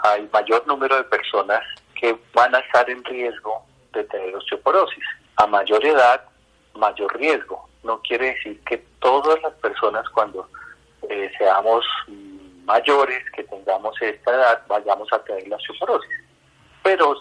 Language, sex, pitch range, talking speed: Spanish, male, 105-160 Hz, 140 wpm